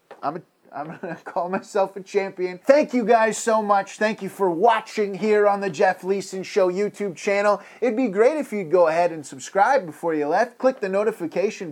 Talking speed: 205 wpm